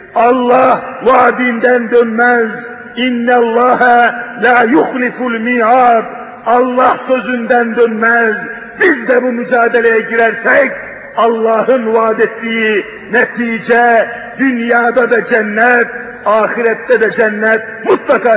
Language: Turkish